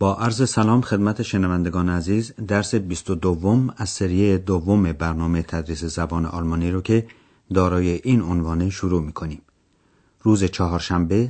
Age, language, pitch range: 40-59, Persian, 90-120 Hz